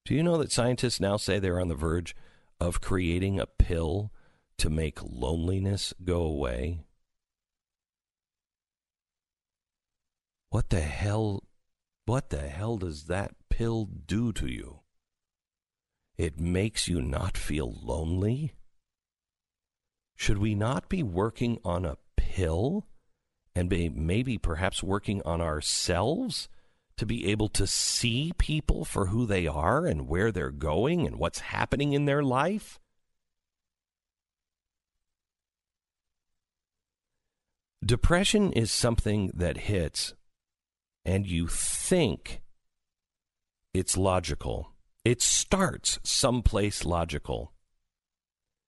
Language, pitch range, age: English, 75-110 Hz, 50-69